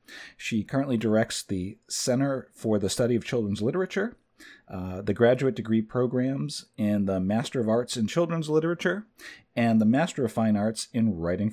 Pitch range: 95-120 Hz